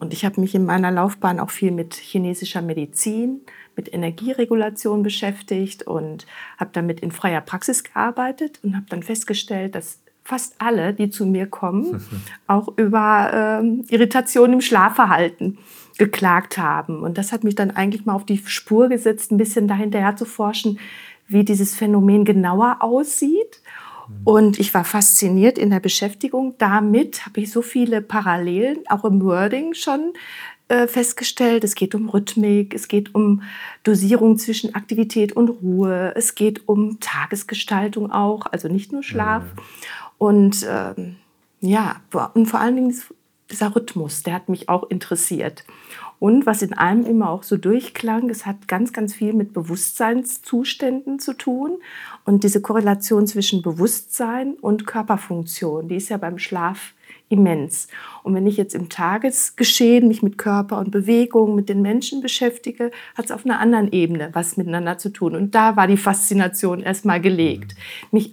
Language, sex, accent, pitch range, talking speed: German, female, German, 190-230 Hz, 155 wpm